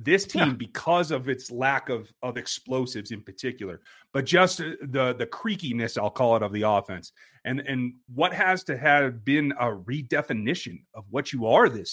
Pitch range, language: 125-175 Hz, English